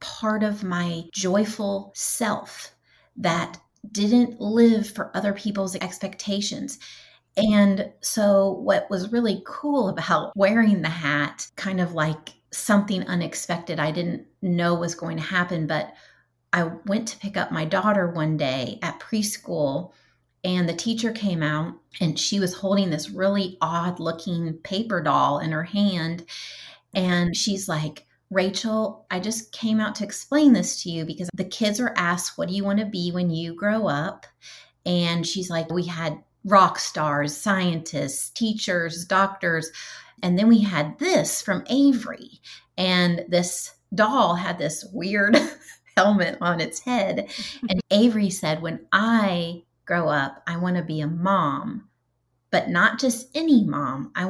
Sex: female